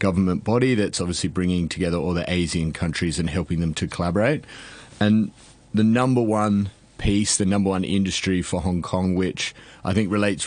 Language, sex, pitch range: English, male, 85-100 Hz